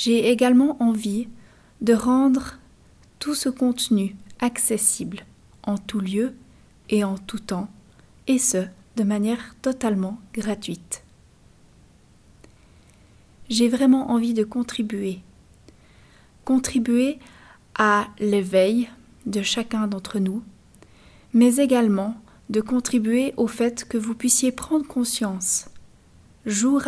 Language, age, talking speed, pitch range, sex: French, 30-49, 105 wpm, 205-240 Hz, female